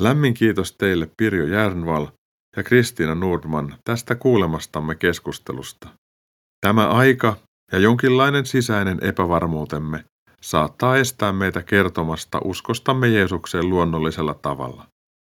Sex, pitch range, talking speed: male, 85-120 Hz, 100 wpm